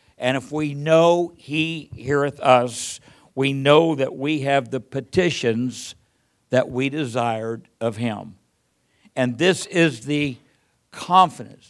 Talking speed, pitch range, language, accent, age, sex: 125 wpm, 120-145 Hz, English, American, 60-79, male